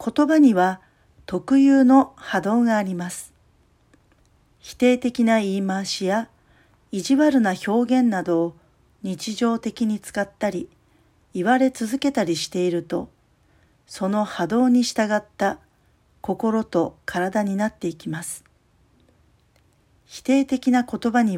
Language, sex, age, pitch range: Japanese, female, 40-59, 175-245 Hz